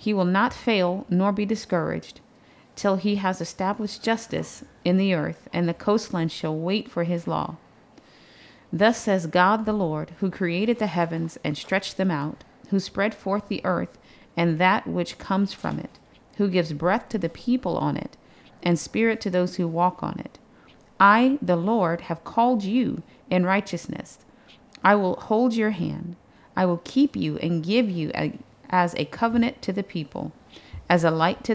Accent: American